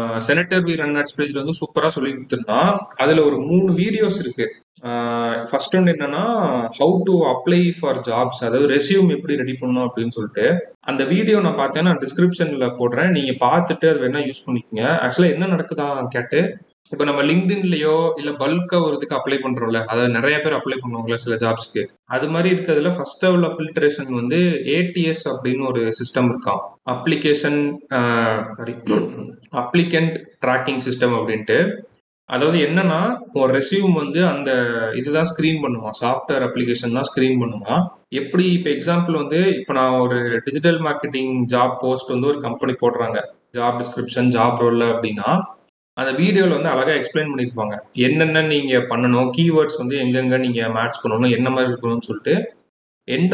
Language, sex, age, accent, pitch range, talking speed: Tamil, male, 30-49, native, 125-165 Hz, 100 wpm